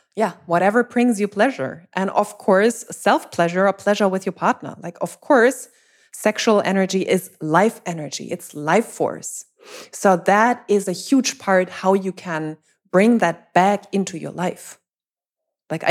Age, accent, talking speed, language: 20-39, German, 160 wpm, English